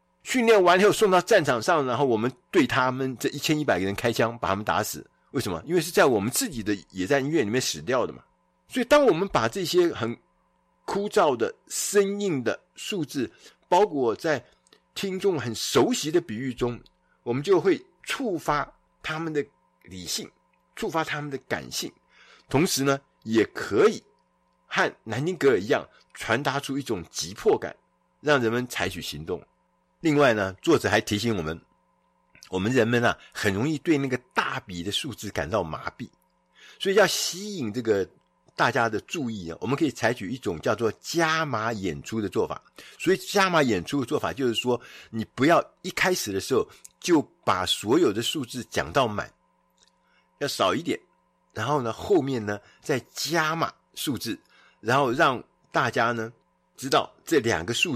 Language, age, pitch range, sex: Chinese, 50-69, 110-175 Hz, male